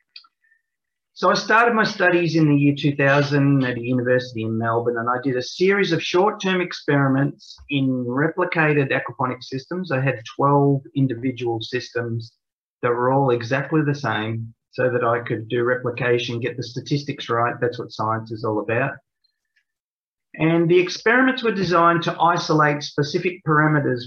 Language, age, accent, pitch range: English, 30-49, Australian, 120-155 Hz